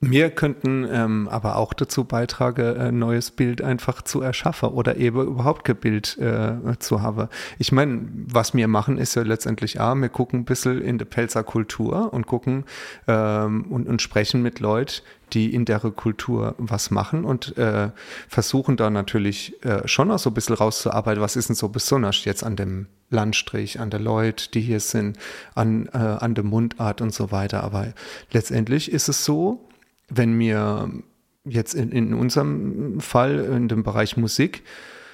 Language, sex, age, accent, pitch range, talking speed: German, male, 30-49, German, 110-130 Hz, 175 wpm